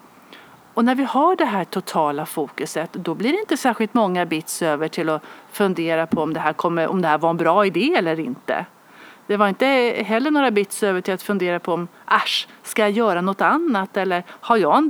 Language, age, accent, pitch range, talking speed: Swedish, 40-59, native, 170-235 Hz, 220 wpm